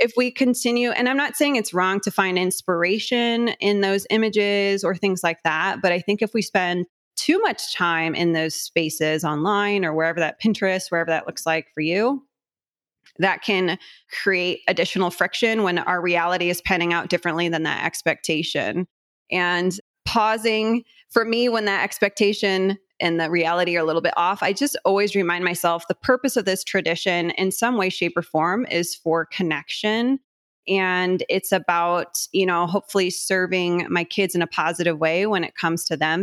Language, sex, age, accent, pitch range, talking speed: English, female, 20-39, American, 170-215 Hz, 180 wpm